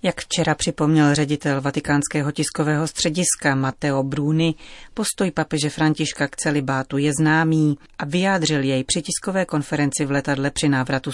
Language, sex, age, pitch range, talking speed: Czech, female, 30-49, 140-165 Hz, 140 wpm